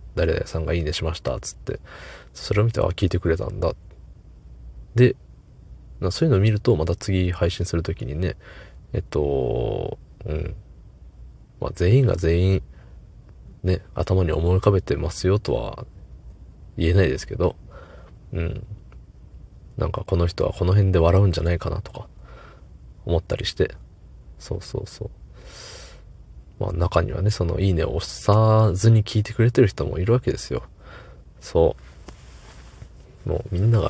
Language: Japanese